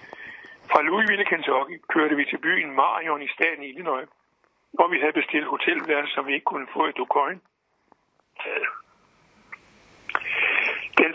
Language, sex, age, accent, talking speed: Danish, male, 60-79, native, 130 wpm